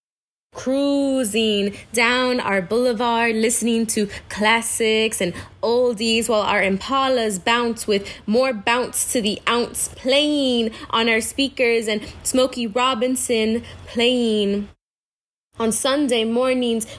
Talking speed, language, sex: 105 wpm, English, female